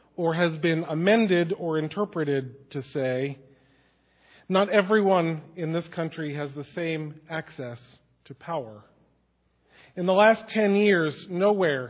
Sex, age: male, 40-59